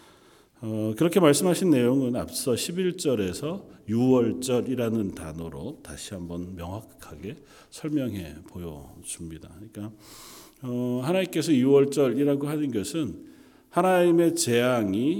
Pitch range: 100-145 Hz